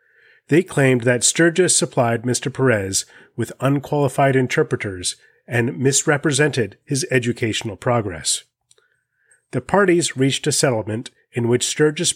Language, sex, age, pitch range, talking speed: English, male, 30-49, 120-145 Hz, 115 wpm